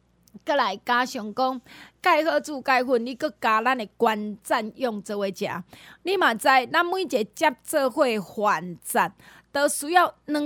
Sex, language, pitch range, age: female, Chinese, 220-295 Hz, 30-49